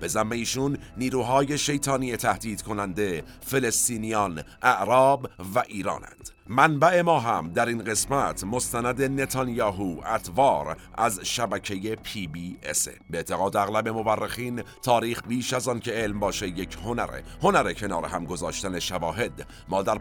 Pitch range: 100-130 Hz